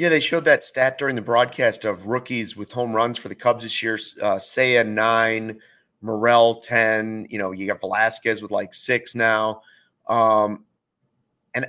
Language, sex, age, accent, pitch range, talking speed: English, male, 30-49, American, 110-130 Hz, 180 wpm